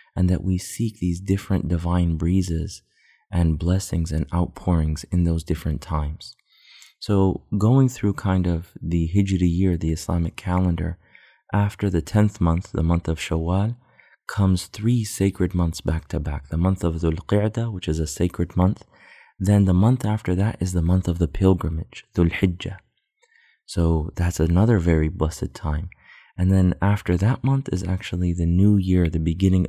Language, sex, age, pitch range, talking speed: English, male, 20-39, 80-95 Hz, 165 wpm